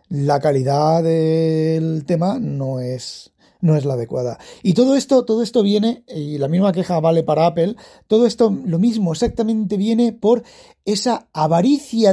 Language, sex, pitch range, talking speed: Spanish, male, 165-250 Hz, 160 wpm